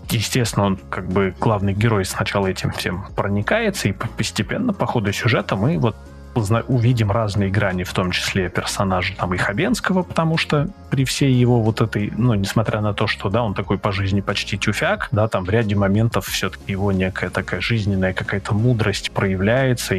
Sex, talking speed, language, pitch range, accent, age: male, 175 wpm, Russian, 95-120 Hz, native, 20-39